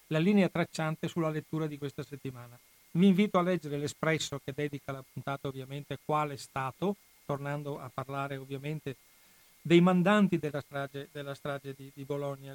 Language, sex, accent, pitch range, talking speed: Italian, male, native, 140-175 Hz, 165 wpm